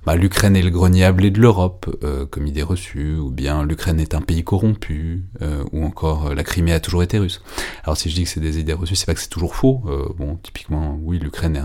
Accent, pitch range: French, 75-95 Hz